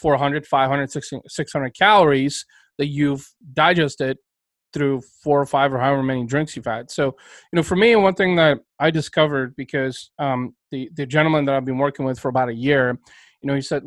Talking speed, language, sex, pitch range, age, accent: 200 wpm, English, male, 135-155 Hz, 30-49, American